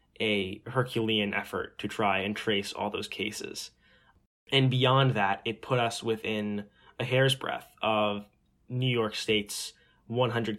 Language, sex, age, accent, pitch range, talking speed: English, male, 10-29, American, 105-120 Hz, 140 wpm